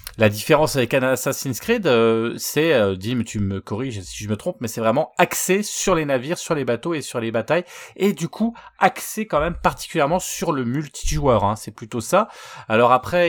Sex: male